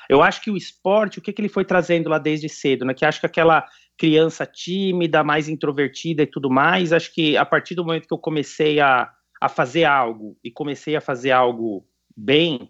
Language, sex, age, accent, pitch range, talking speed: Portuguese, male, 30-49, Brazilian, 135-175 Hz, 215 wpm